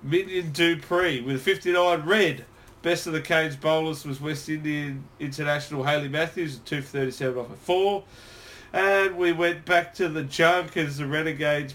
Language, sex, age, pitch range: English, male, 40-59, 135-170 Hz